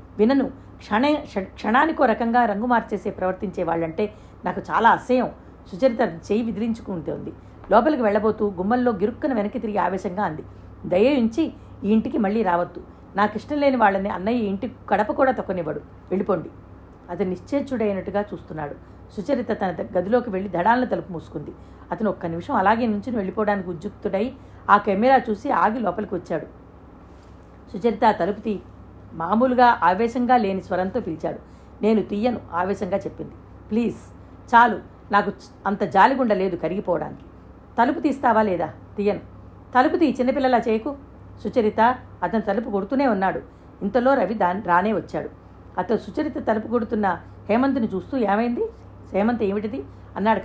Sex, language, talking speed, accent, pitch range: female, Telugu, 125 wpm, native, 190-245 Hz